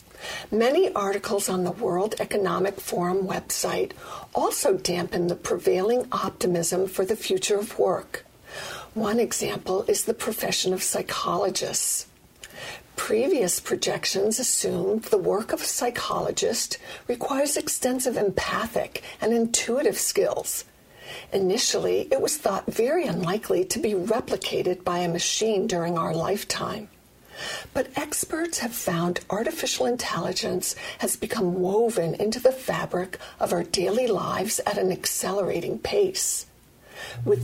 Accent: American